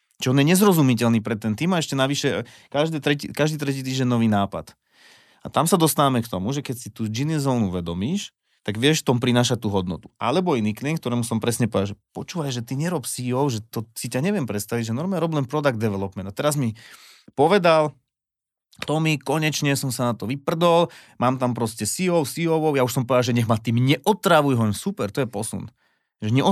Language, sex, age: Slovak, male, 30-49